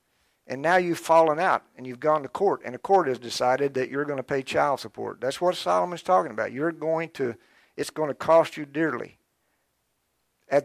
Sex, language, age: male, English, 50-69